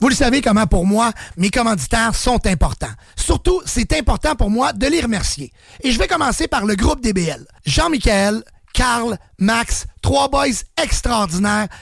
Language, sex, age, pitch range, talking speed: English, male, 30-49, 210-270 Hz, 170 wpm